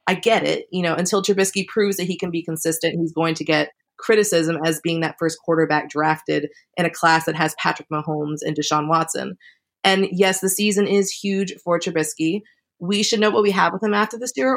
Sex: female